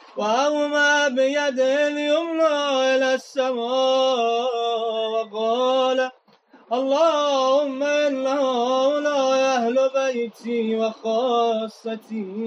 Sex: male